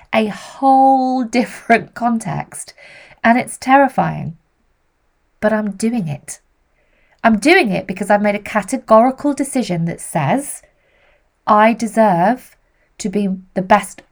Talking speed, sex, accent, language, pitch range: 120 wpm, female, British, English, 185-245 Hz